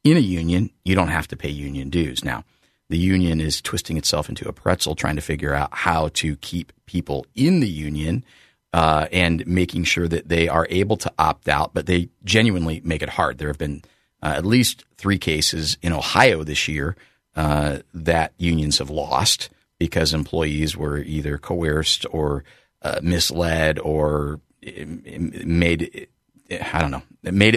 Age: 40-59